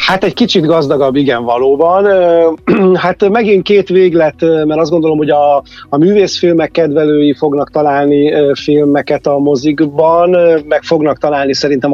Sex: male